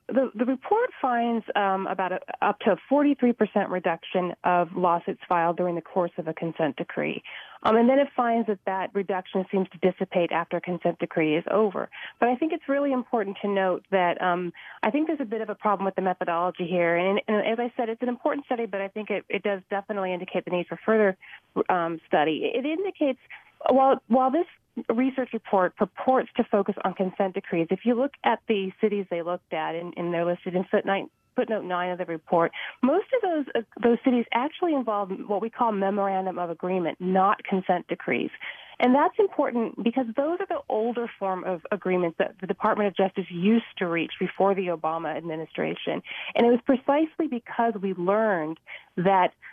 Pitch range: 185-240 Hz